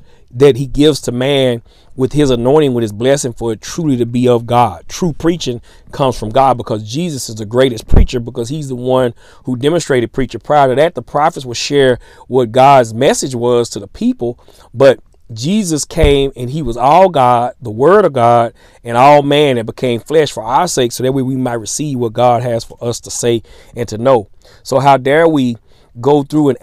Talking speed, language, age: 210 wpm, English, 30-49